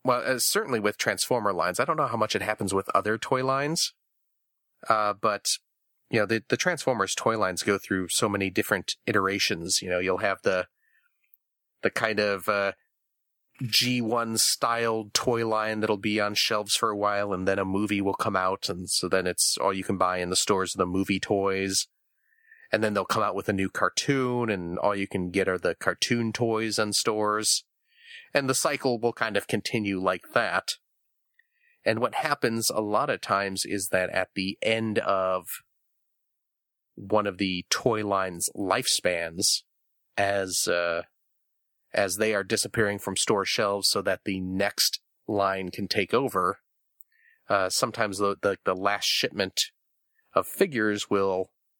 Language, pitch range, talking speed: English, 95-115 Hz, 170 wpm